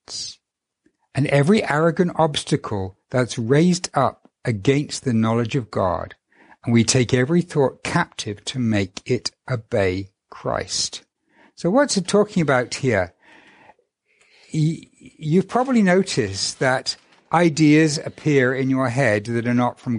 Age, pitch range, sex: 60-79, 115-155 Hz, male